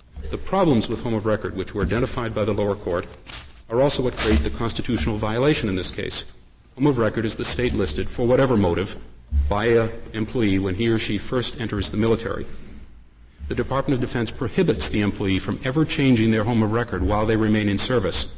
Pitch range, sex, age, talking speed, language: 95-120 Hz, male, 40-59, 205 wpm, English